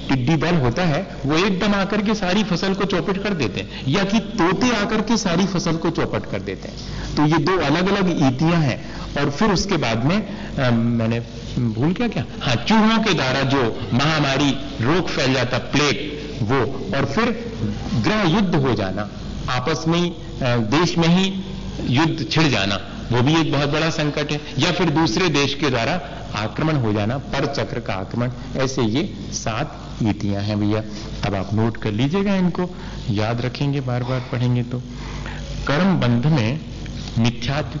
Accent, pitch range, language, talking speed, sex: native, 115-165 Hz, Hindi, 180 wpm, male